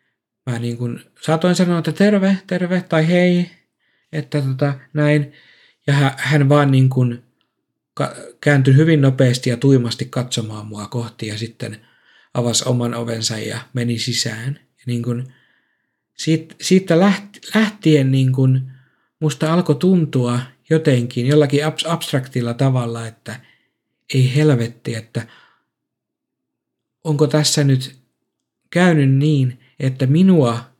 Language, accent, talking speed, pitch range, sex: Finnish, native, 95 wpm, 120-150 Hz, male